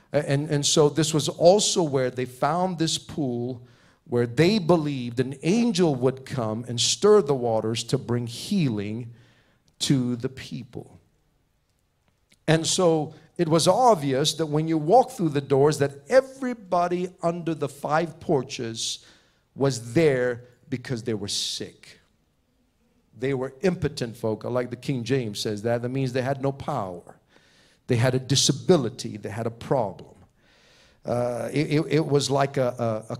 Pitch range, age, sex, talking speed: 120-155 Hz, 50-69, male, 150 wpm